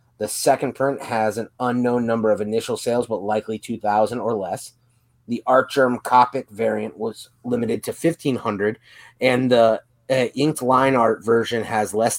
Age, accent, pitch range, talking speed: 30-49, American, 110-125 Hz, 160 wpm